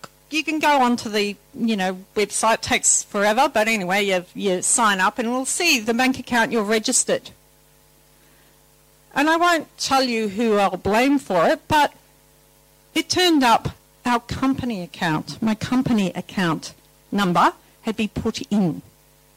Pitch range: 210-275 Hz